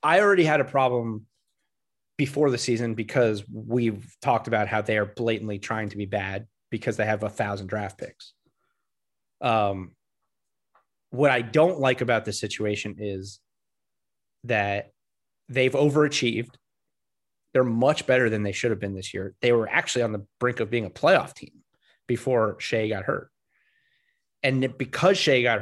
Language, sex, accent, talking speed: English, male, American, 160 wpm